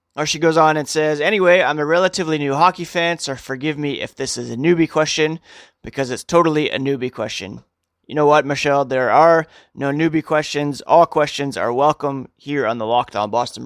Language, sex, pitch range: English, male, 125-155 Hz